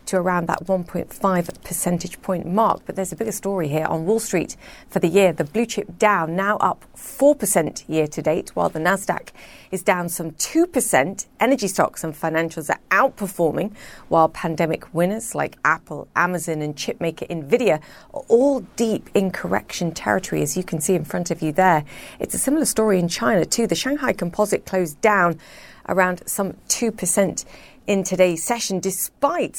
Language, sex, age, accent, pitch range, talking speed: English, female, 30-49, British, 165-210 Hz, 175 wpm